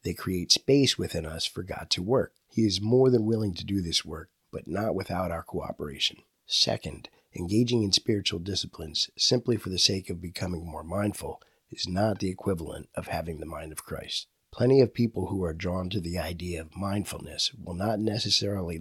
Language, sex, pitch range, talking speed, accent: English, male, 85-110 Hz, 190 wpm, American